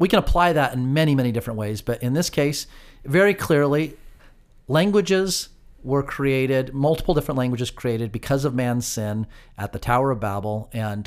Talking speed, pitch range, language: 175 wpm, 110-140 Hz, English